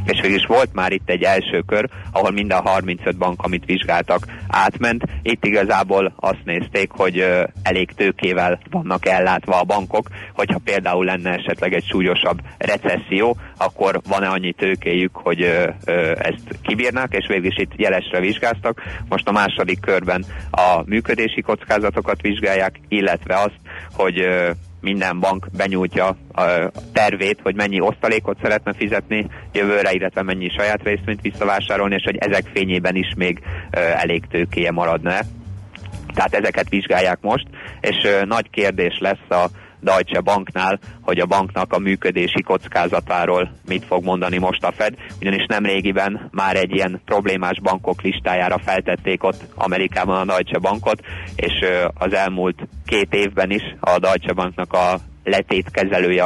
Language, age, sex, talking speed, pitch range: Hungarian, 30-49, male, 140 wpm, 90-100 Hz